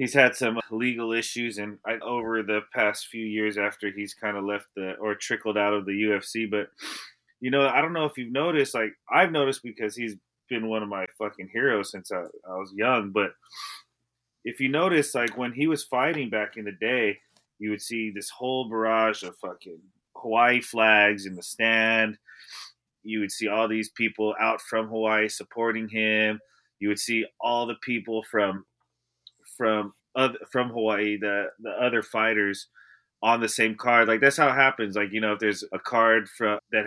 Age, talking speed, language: 30-49, 195 wpm, English